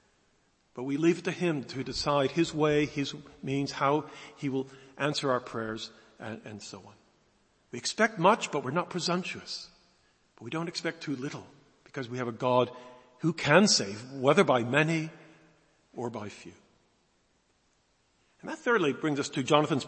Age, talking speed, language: 50-69, 170 wpm, English